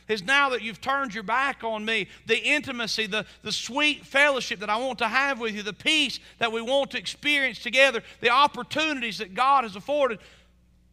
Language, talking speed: English, 200 wpm